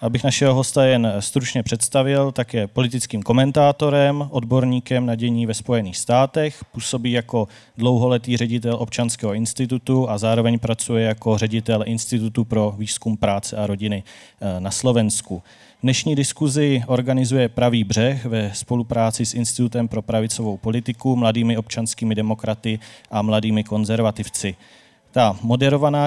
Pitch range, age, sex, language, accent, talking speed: 110-130 Hz, 30-49, male, Czech, native, 125 wpm